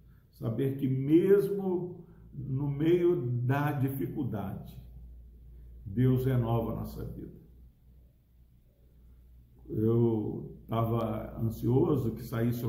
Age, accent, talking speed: 60-79, Brazilian, 80 wpm